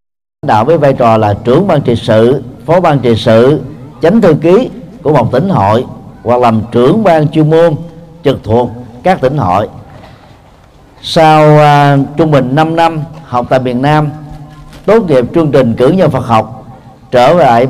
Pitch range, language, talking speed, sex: 120-160 Hz, Vietnamese, 170 wpm, male